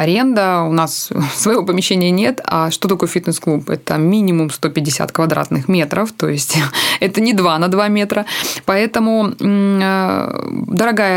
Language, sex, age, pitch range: Russian, female, 20-39, 170-210 Hz